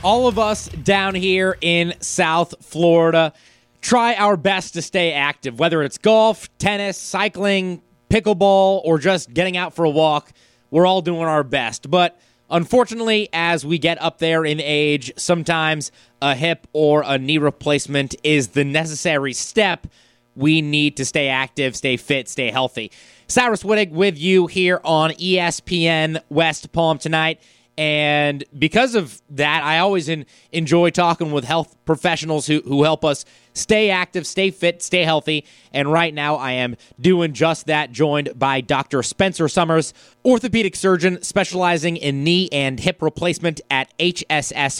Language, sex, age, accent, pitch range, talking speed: English, male, 20-39, American, 145-180 Hz, 155 wpm